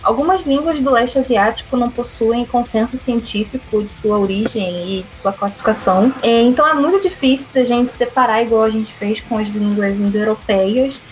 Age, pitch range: 10-29, 215-265 Hz